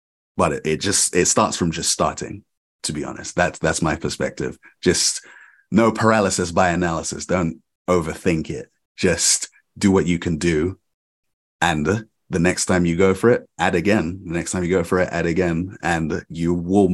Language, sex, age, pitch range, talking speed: English, male, 30-49, 80-95 Hz, 180 wpm